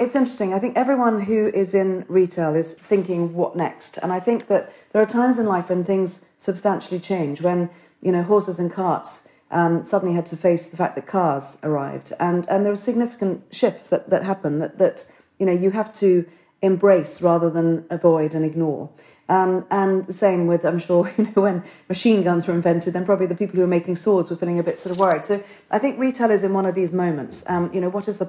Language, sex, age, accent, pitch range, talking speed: English, female, 40-59, British, 165-195 Hz, 230 wpm